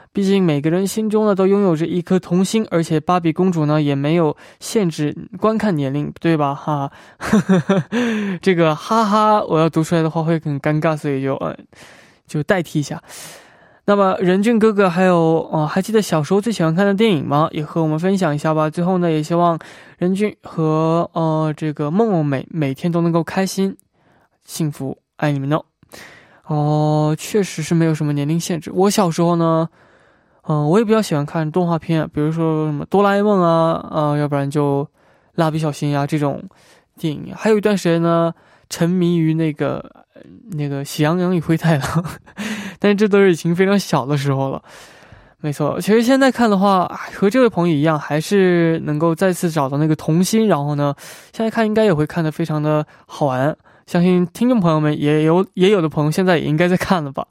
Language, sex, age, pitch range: Korean, male, 20-39, 150-190 Hz